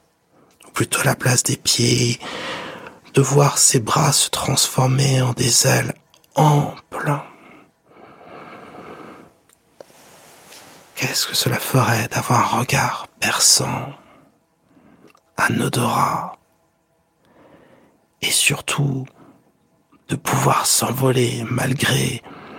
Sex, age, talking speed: male, 60-79, 80 wpm